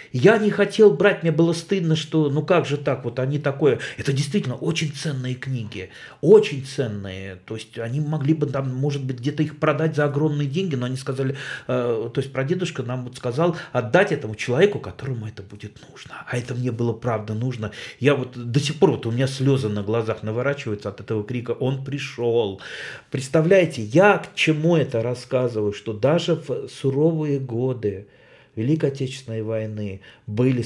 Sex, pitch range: male, 115-155 Hz